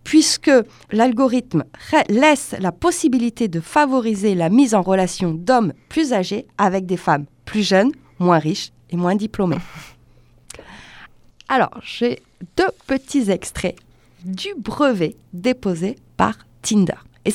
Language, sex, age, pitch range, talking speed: French, female, 20-39, 185-260 Hz, 120 wpm